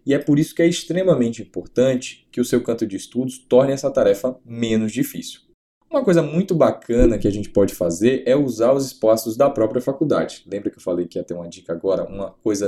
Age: 10-29